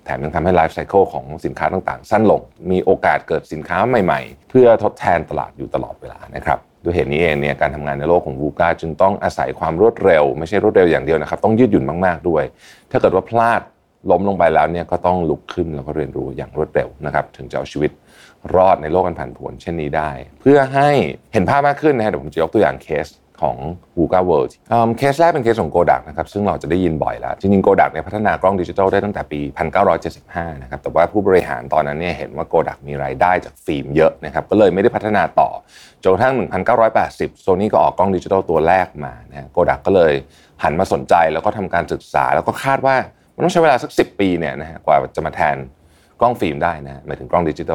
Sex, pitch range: male, 75-100 Hz